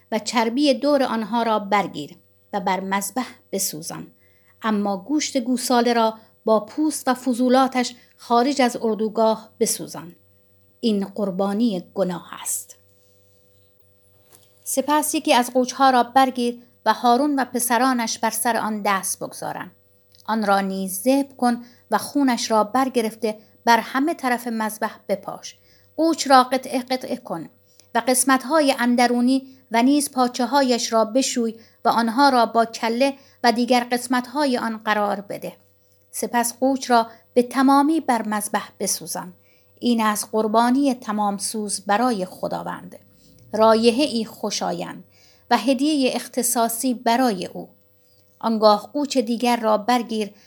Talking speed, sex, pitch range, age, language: 125 wpm, female, 210-255 Hz, 50-69, Persian